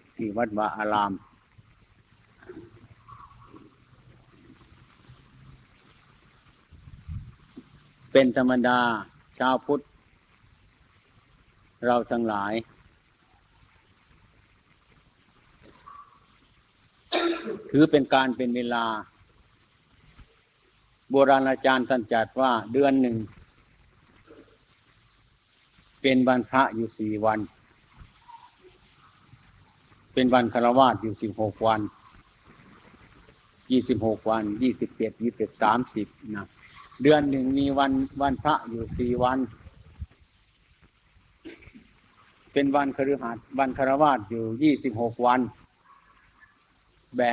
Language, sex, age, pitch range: Thai, male, 60-79, 110-135 Hz